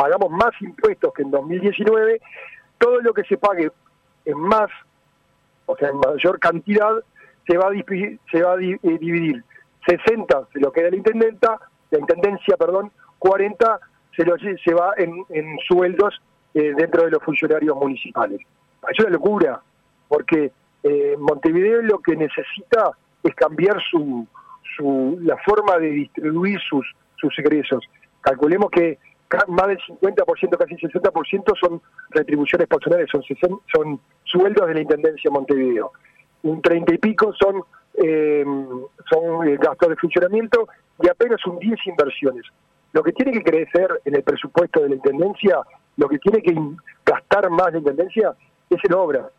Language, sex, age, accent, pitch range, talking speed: Spanish, male, 40-59, Argentinian, 160-210 Hz, 155 wpm